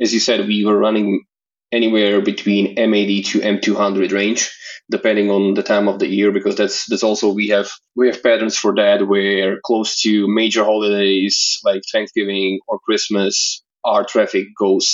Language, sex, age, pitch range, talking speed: English, male, 20-39, 100-115 Hz, 170 wpm